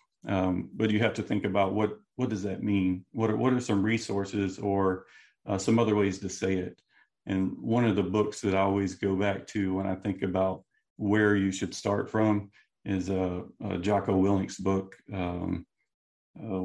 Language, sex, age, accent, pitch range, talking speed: English, male, 40-59, American, 95-110 Hz, 200 wpm